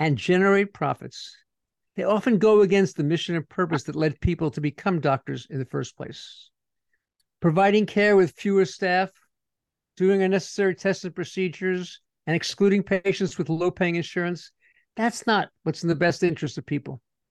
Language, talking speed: English, 160 wpm